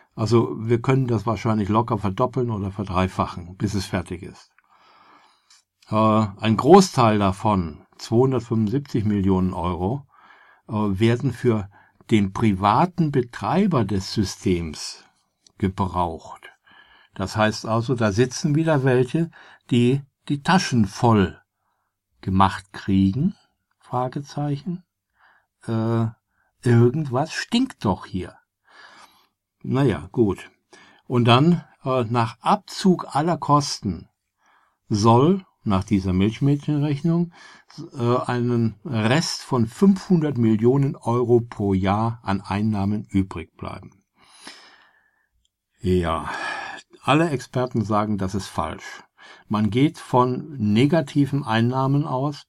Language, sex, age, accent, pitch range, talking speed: German, male, 60-79, German, 100-140 Hz, 100 wpm